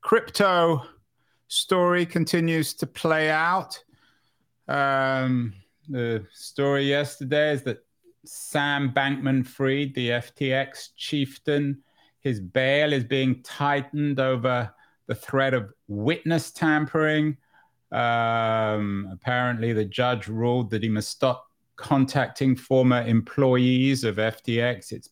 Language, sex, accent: English, male, British